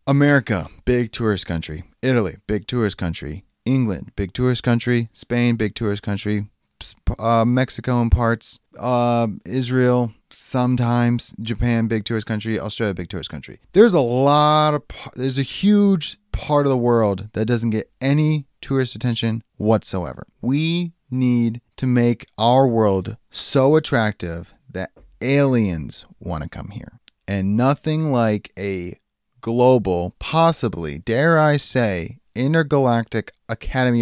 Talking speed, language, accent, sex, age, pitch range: 130 wpm, English, American, male, 30-49, 100-130 Hz